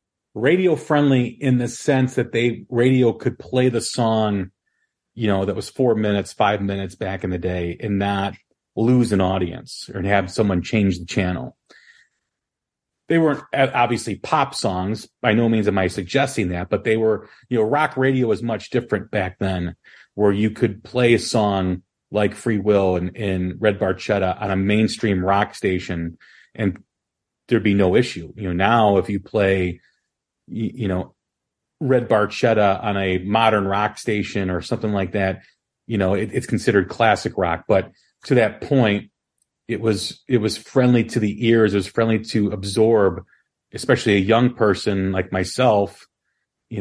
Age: 40-59